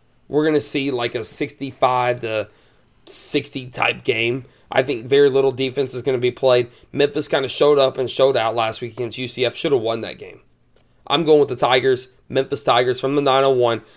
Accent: American